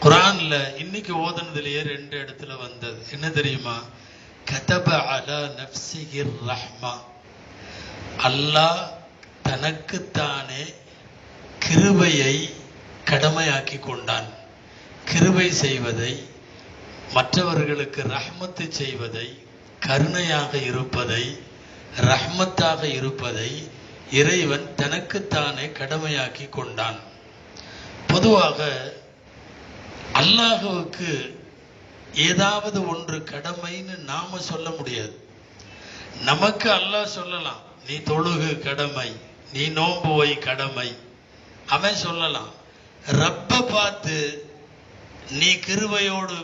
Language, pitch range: Tamil, 130-175 Hz